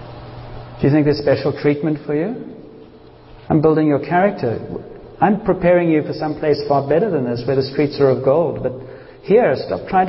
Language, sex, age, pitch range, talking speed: English, male, 50-69, 145-185 Hz, 190 wpm